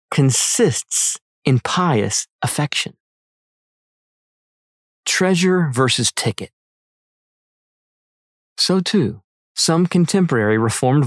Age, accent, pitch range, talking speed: 40-59, American, 120-170 Hz, 65 wpm